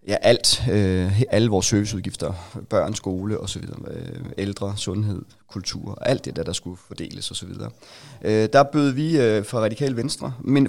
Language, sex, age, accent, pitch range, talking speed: Danish, male, 30-49, native, 105-140 Hz, 145 wpm